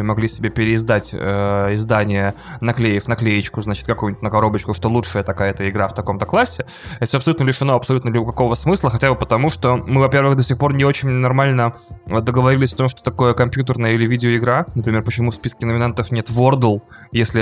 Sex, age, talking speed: male, 20-39, 185 wpm